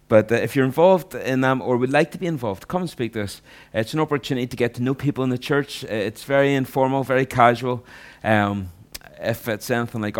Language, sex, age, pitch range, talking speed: English, male, 30-49, 100-125 Hz, 230 wpm